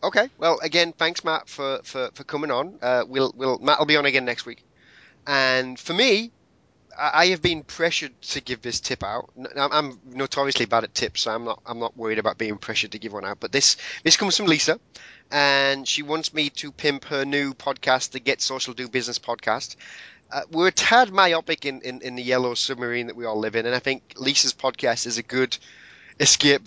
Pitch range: 120-140 Hz